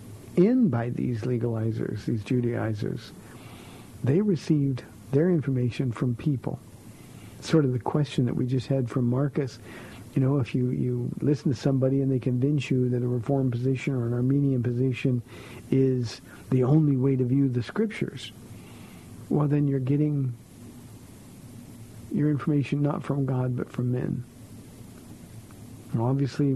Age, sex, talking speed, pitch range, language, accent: 50-69, male, 140 wpm, 120-145 Hz, English, American